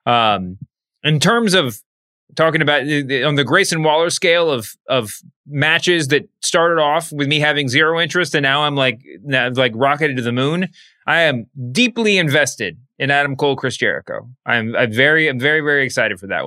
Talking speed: 190 wpm